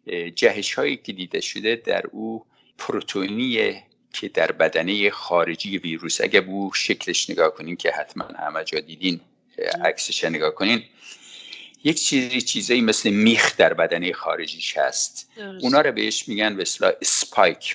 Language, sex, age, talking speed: English, male, 50-69, 135 wpm